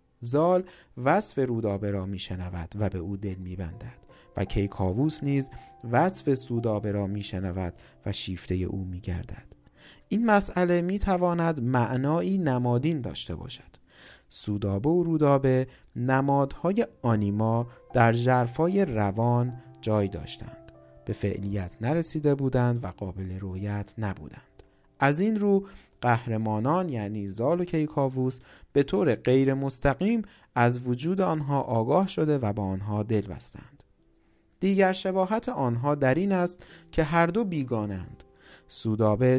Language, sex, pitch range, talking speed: Persian, male, 105-160 Hz, 120 wpm